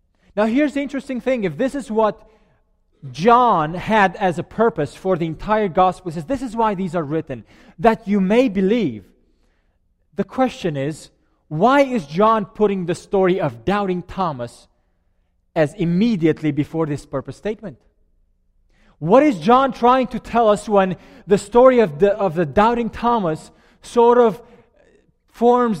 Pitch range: 145-205 Hz